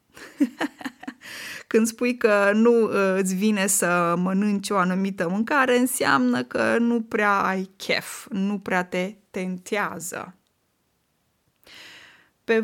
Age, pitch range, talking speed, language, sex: 20-39, 185-225 Hz, 105 wpm, Romanian, female